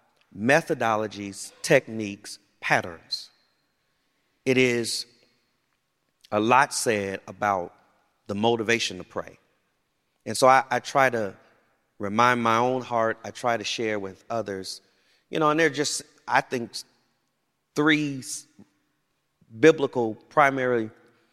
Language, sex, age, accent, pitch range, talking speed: English, male, 30-49, American, 105-130 Hz, 115 wpm